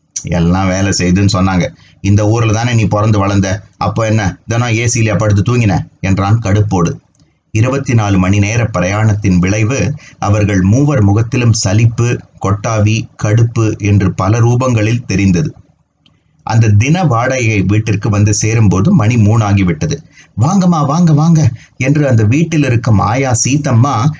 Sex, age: male, 30-49